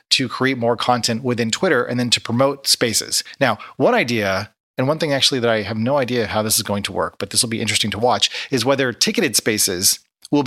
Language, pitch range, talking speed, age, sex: English, 110-135 Hz, 235 wpm, 30-49, male